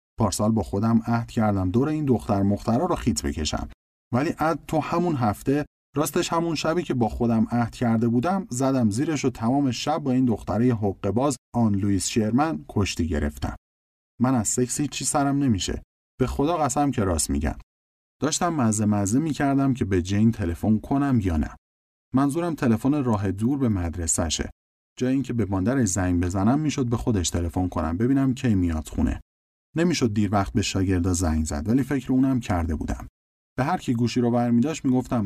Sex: male